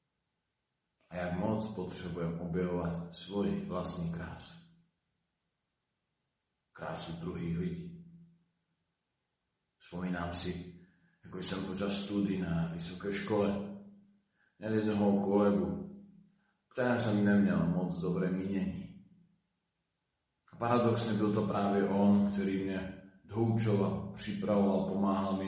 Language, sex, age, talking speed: Slovak, male, 40-59, 95 wpm